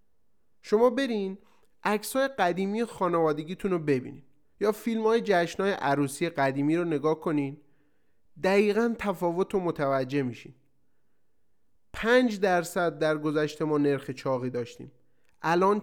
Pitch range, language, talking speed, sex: 145-200 Hz, Persian, 115 wpm, male